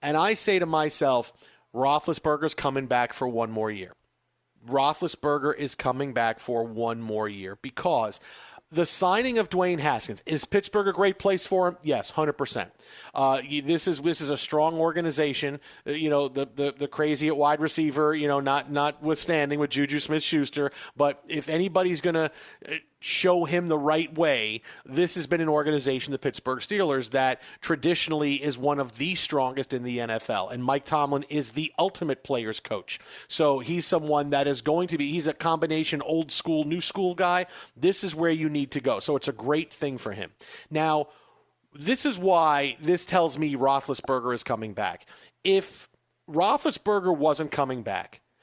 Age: 40-59